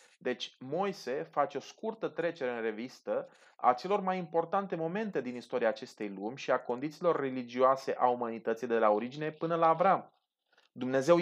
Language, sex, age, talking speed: Romanian, male, 30-49, 160 wpm